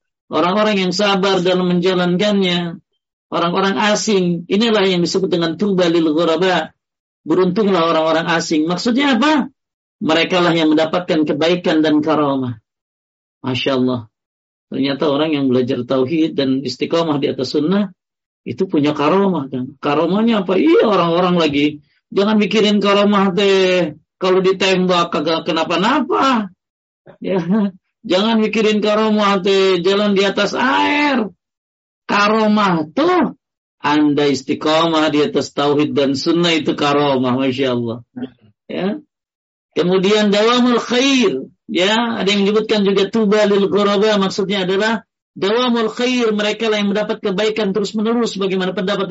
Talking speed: 120 wpm